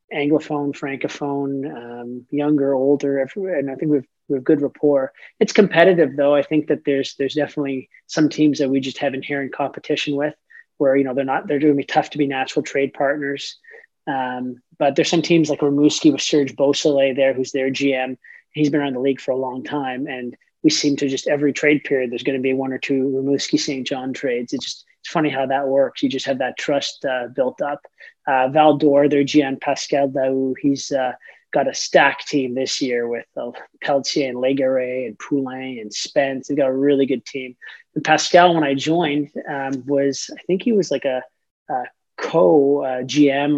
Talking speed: 200 wpm